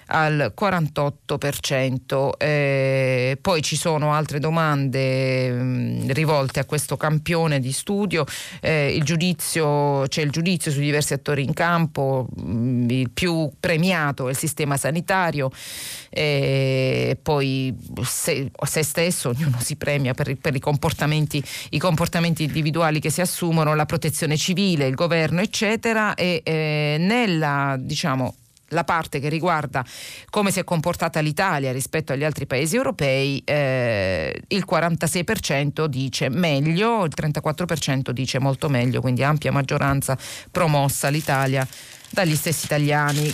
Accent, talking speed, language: native, 130 wpm, Italian